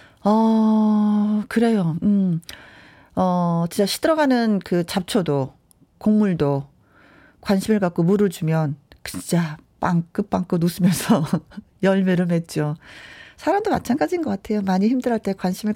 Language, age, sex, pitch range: Korean, 40-59, female, 180-225 Hz